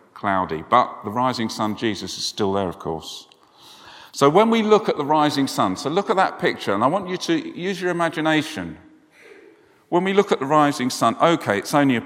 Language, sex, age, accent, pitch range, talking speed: English, male, 50-69, British, 105-160 Hz, 215 wpm